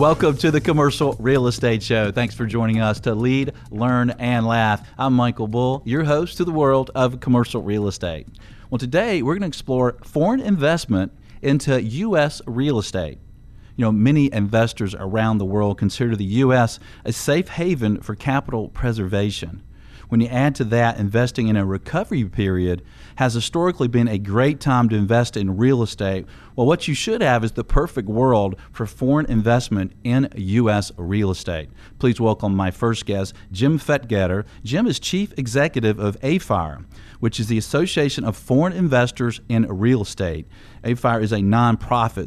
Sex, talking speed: male, 170 wpm